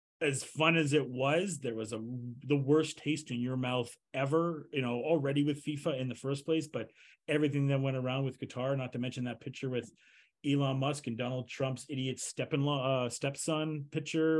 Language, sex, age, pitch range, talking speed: English, male, 30-49, 130-150 Hz, 205 wpm